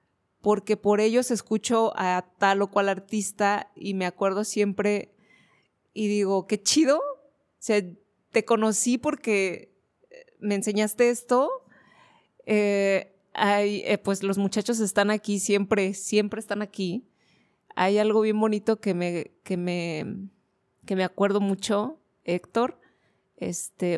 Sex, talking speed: female, 130 wpm